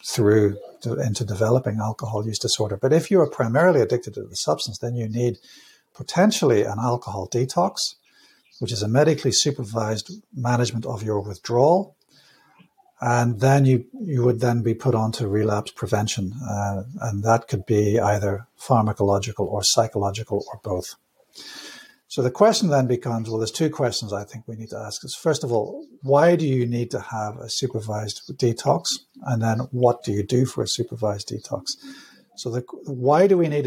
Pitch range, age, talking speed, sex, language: 110-140 Hz, 60-79, 175 wpm, male, English